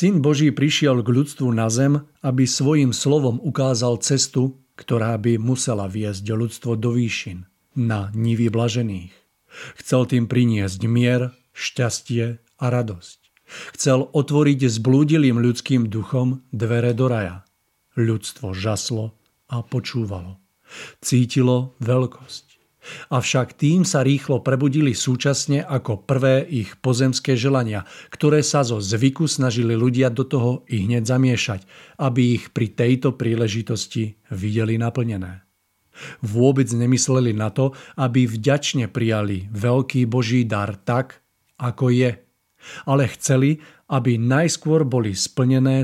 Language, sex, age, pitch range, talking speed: Czech, male, 50-69, 115-135 Hz, 120 wpm